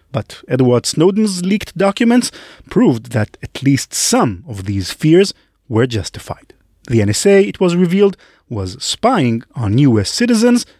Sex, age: male, 30-49